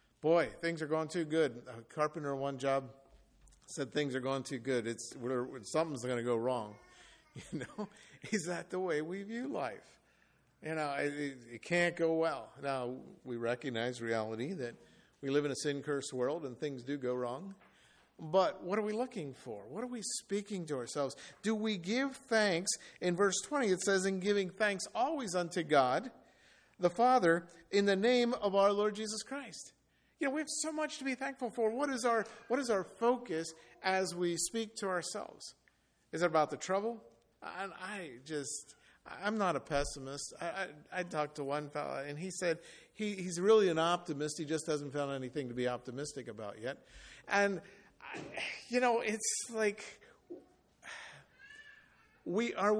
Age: 50-69